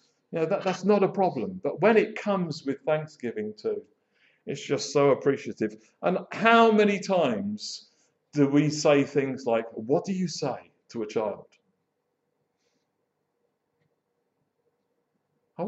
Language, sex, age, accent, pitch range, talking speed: English, male, 50-69, British, 120-185 Hz, 135 wpm